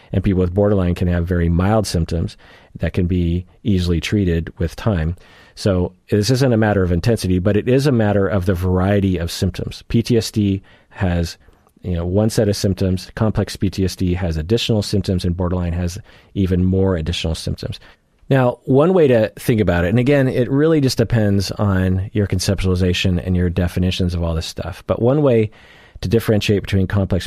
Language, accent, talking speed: English, American, 180 wpm